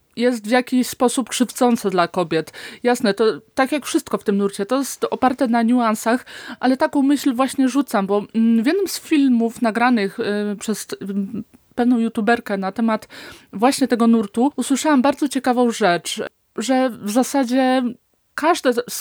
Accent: native